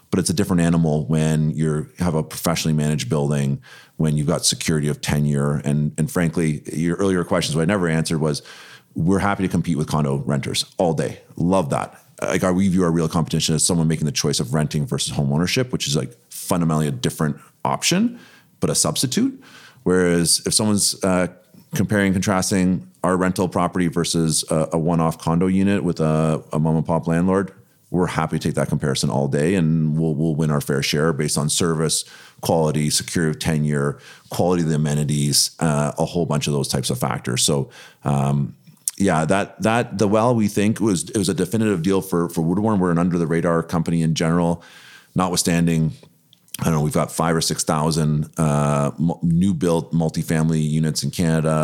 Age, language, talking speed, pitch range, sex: 30-49, English, 195 wpm, 75-90 Hz, male